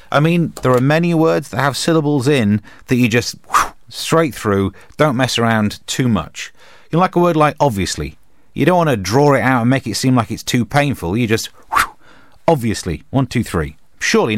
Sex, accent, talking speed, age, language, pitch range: male, British, 200 wpm, 30-49, English, 90-135 Hz